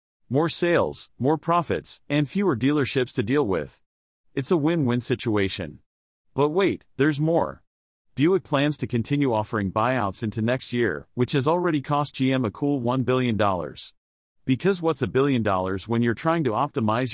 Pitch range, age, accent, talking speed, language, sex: 110-145 Hz, 40-59, American, 160 wpm, English, male